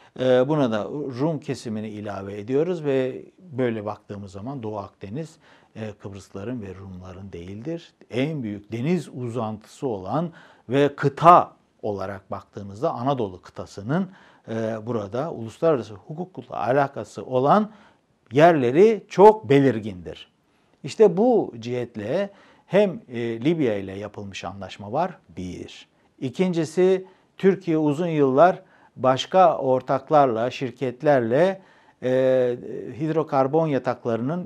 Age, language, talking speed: 60-79, Turkish, 95 wpm